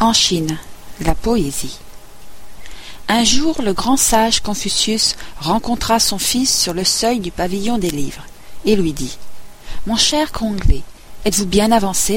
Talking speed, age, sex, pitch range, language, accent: 150 wpm, 50-69, female, 165-225 Hz, French, French